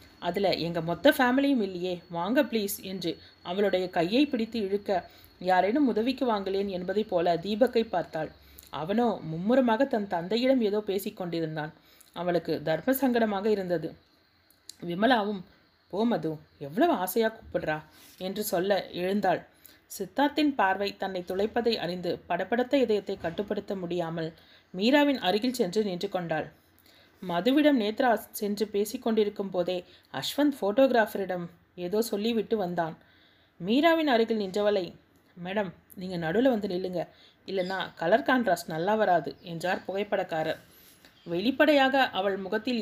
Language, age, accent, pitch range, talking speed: Tamil, 30-49, native, 175-230 Hz, 115 wpm